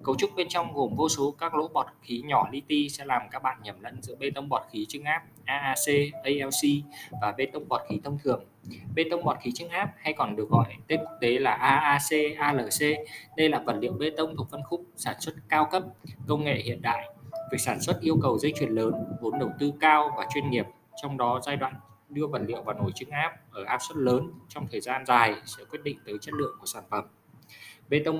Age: 20-39